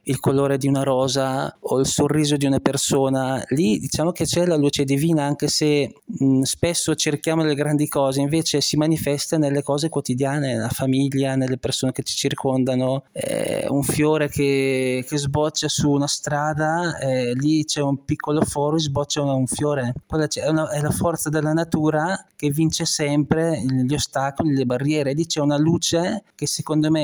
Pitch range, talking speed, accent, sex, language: 140-160 Hz, 175 wpm, native, male, Italian